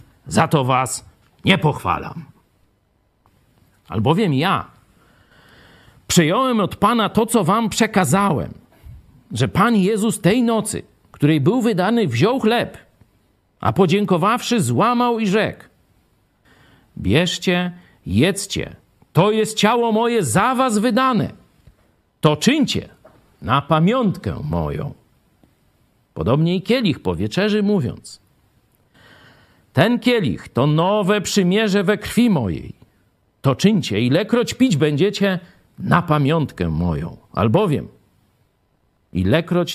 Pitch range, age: 130-215 Hz, 50-69